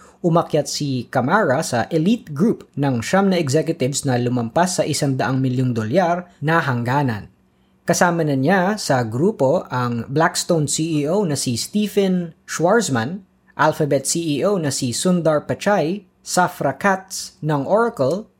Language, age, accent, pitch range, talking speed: Filipino, 20-39, native, 130-175 Hz, 125 wpm